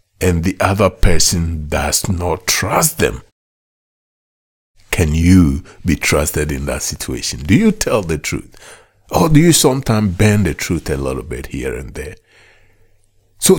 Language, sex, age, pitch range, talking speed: English, male, 60-79, 85-125 Hz, 150 wpm